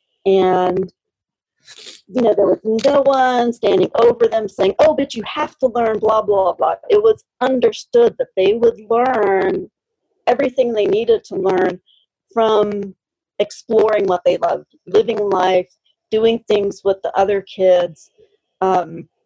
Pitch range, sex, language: 190-275 Hz, female, English